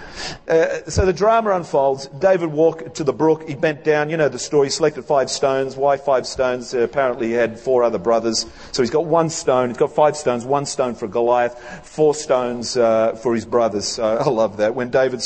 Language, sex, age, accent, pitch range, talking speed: English, male, 40-59, Australian, 120-160 Hz, 220 wpm